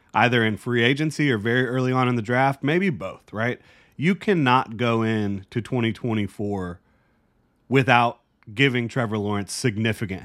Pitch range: 100-125 Hz